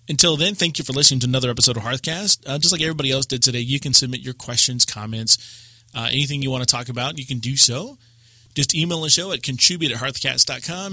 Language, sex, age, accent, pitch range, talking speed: English, male, 30-49, American, 115-150 Hz, 235 wpm